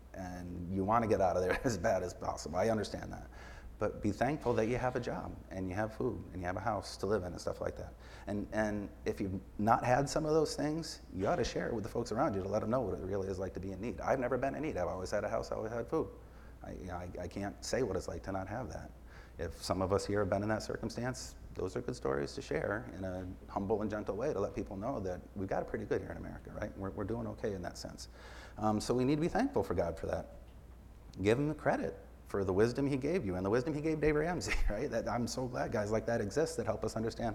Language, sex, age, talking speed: English, male, 30-49, 295 wpm